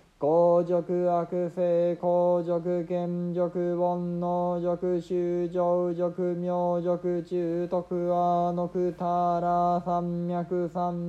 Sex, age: male, 20-39